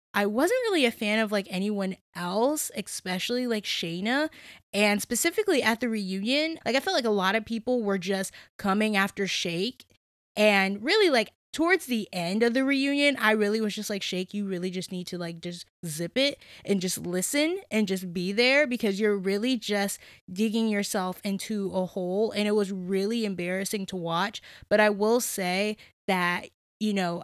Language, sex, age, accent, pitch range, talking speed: English, female, 10-29, American, 190-235 Hz, 185 wpm